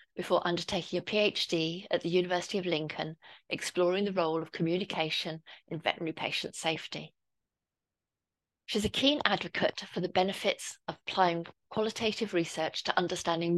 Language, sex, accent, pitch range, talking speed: English, female, British, 165-195 Hz, 135 wpm